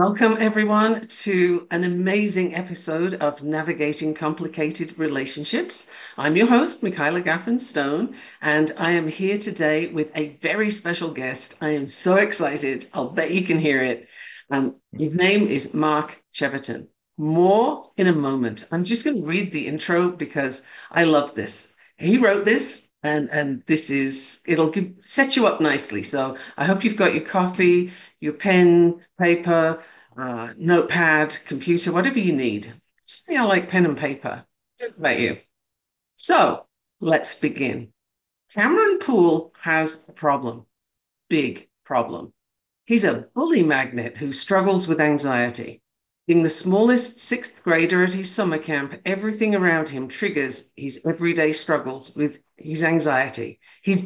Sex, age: female, 50-69